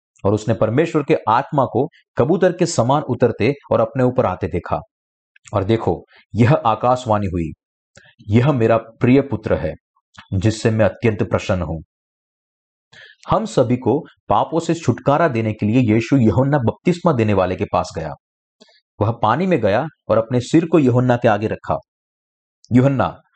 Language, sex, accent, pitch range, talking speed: Hindi, male, native, 100-130 Hz, 155 wpm